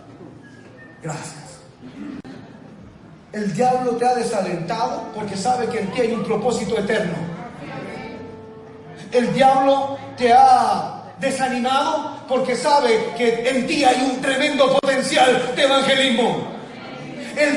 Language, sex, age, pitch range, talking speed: Spanish, male, 40-59, 170-265 Hz, 110 wpm